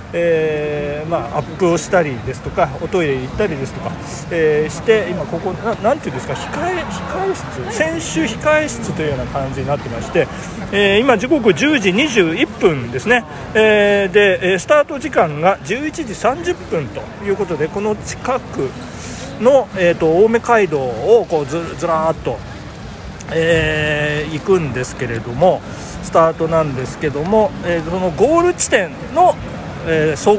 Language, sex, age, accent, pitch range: Japanese, male, 40-59, native, 140-215 Hz